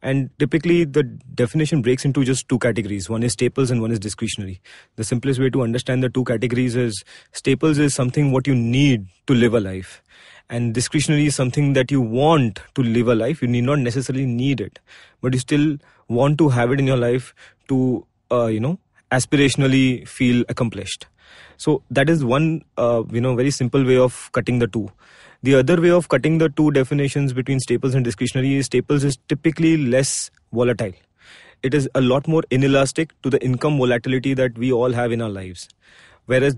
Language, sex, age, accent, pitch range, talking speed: English, male, 20-39, Indian, 120-140 Hz, 195 wpm